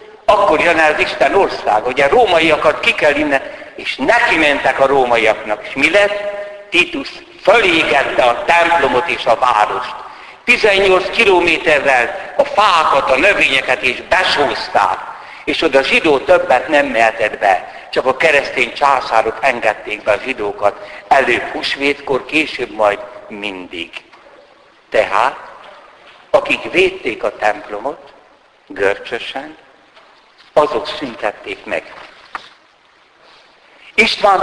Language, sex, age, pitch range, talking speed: Hungarian, male, 60-79, 130-195 Hz, 110 wpm